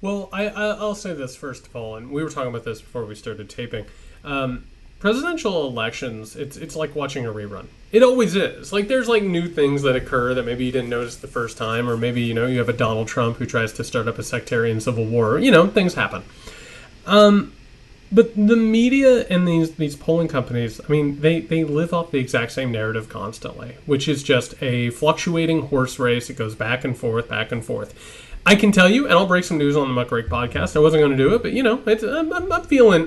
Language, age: English, 30-49